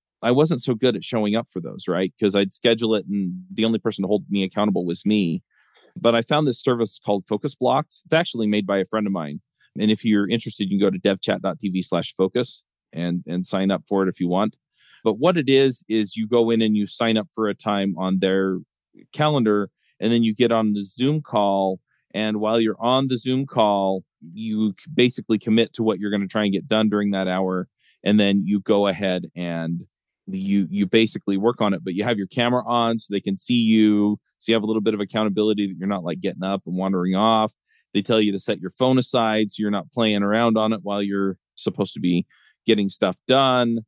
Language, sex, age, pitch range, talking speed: English, male, 40-59, 95-115 Hz, 230 wpm